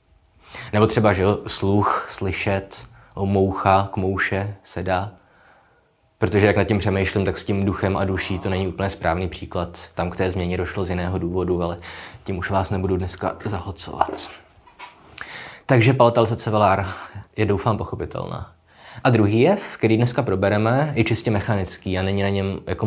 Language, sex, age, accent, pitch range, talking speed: Czech, male, 20-39, native, 90-110 Hz, 160 wpm